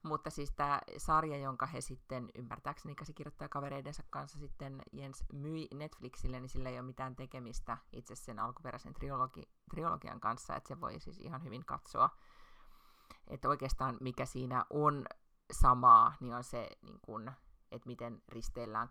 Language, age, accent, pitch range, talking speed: Finnish, 30-49, native, 125-145 Hz, 135 wpm